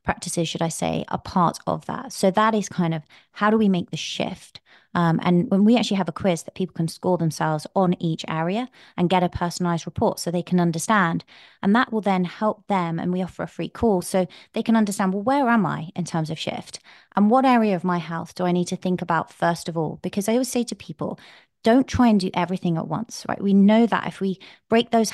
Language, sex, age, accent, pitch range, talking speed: English, female, 20-39, British, 170-215 Hz, 250 wpm